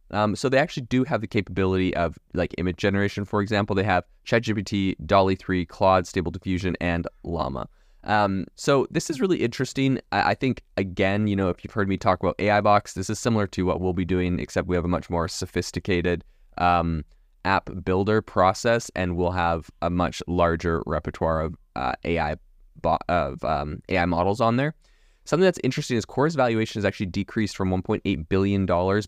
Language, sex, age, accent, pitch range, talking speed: English, male, 20-39, American, 90-105 Hz, 190 wpm